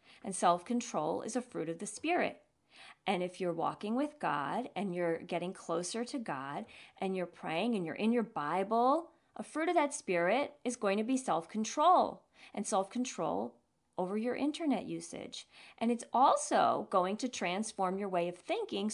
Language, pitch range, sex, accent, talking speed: English, 180-270 Hz, female, American, 170 wpm